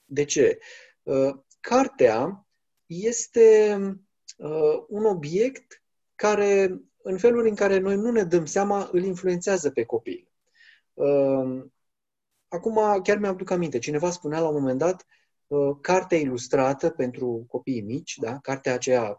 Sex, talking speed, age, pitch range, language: male, 135 wpm, 30-49, 135-190 Hz, Romanian